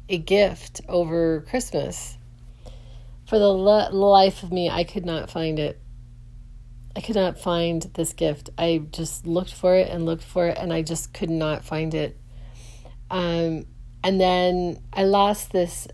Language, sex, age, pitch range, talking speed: English, female, 40-59, 130-180 Hz, 160 wpm